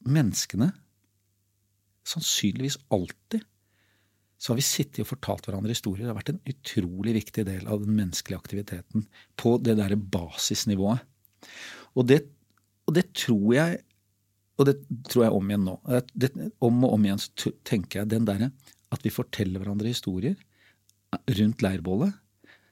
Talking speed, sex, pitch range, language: 135 wpm, male, 100-120 Hz, English